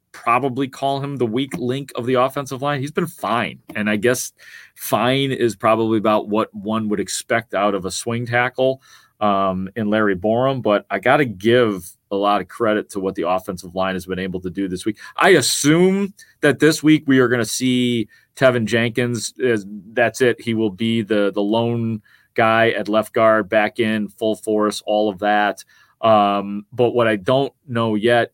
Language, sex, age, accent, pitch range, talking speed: English, male, 30-49, American, 105-125 Hz, 195 wpm